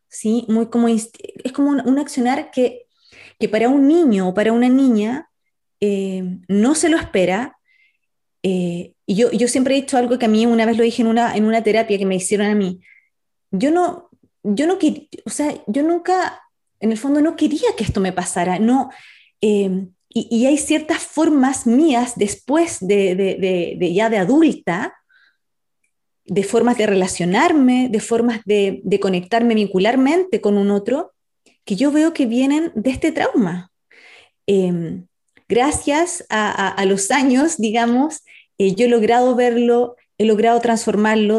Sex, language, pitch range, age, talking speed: female, Spanish, 205-280 Hz, 20-39, 170 wpm